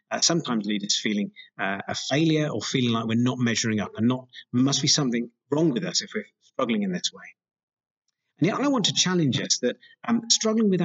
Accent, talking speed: British, 225 wpm